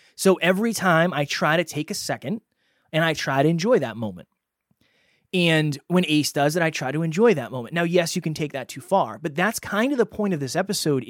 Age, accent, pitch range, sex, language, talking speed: 20-39, American, 140-190 Hz, male, English, 240 wpm